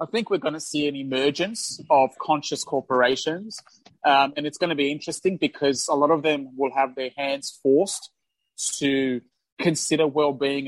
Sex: male